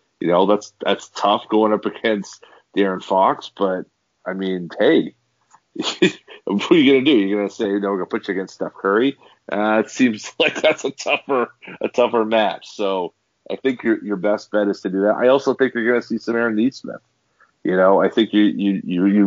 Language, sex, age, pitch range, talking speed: English, male, 40-59, 95-110 Hz, 205 wpm